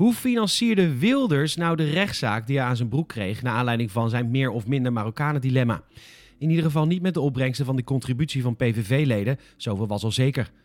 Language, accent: Dutch, Dutch